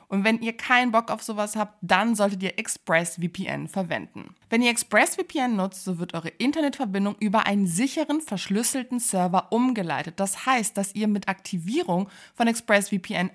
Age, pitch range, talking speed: 20-39, 180-230 Hz, 155 wpm